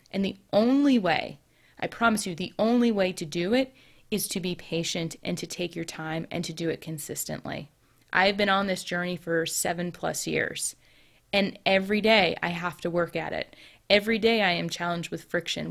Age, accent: 20-39, American